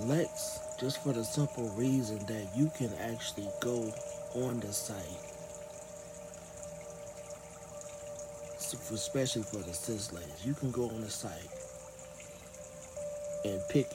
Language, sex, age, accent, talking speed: English, male, 60-79, American, 115 wpm